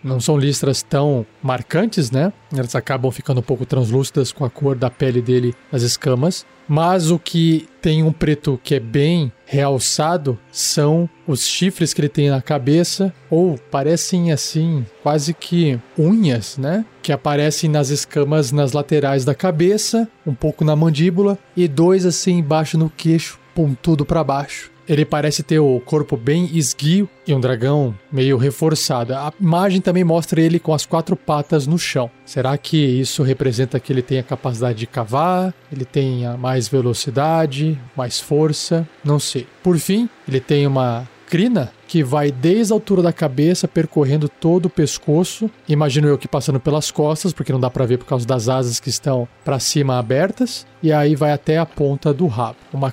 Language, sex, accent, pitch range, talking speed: Portuguese, male, Brazilian, 130-165 Hz, 175 wpm